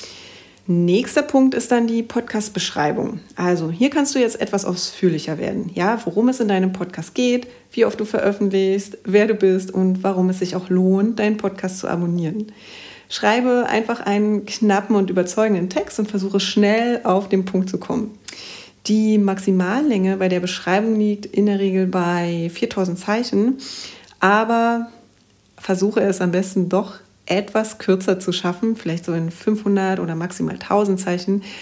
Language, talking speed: German, 160 wpm